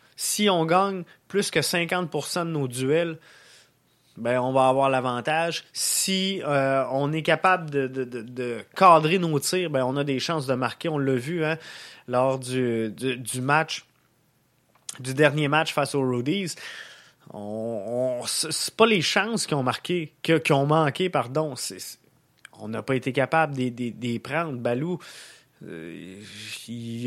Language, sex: French, male